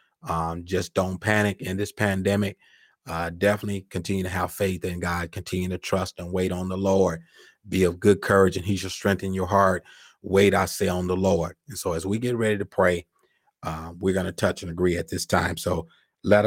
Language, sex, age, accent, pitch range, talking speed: English, male, 30-49, American, 85-95 Hz, 215 wpm